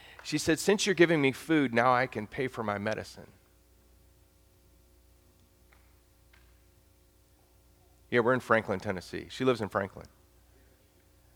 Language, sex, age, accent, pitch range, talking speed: English, male, 40-59, American, 95-130 Hz, 120 wpm